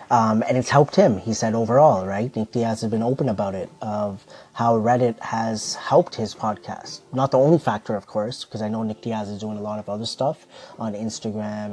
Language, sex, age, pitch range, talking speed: English, male, 30-49, 110-135 Hz, 220 wpm